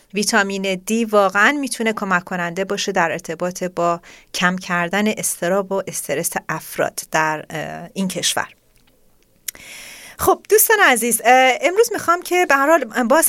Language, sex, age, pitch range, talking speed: Persian, female, 30-49, 180-235 Hz, 120 wpm